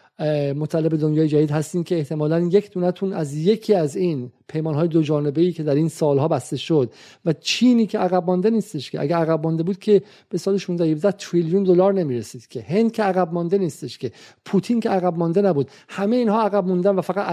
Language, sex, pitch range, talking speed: Persian, male, 160-200 Hz, 210 wpm